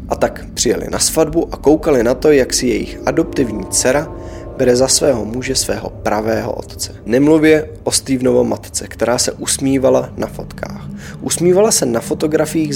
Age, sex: 20-39, male